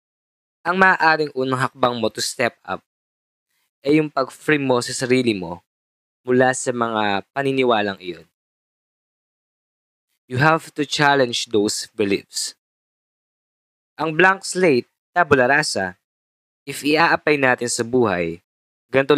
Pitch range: 100-145 Hz